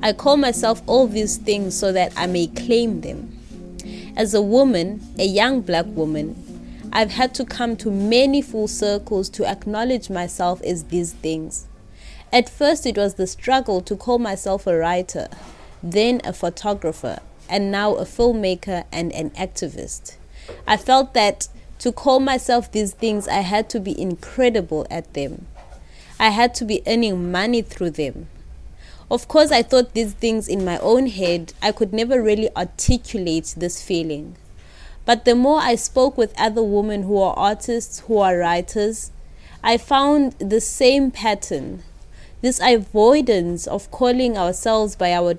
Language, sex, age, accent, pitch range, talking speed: English, female, 20-39, South African, 175-235 Hz, 160 wpm